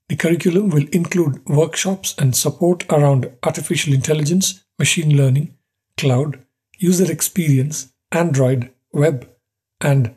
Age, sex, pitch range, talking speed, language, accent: 50-69, male, 135-170 Hz, 105 wpm, English, Indian